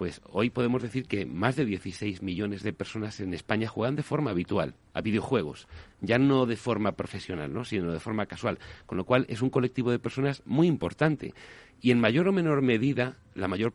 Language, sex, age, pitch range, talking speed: Spanish, male, 40-59, 100-130 Hz, 205 wpm